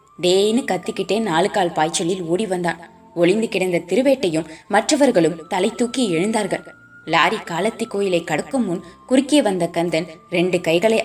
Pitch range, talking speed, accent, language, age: 170-225 Hz, 130 wpm, native, Tamil, 20-39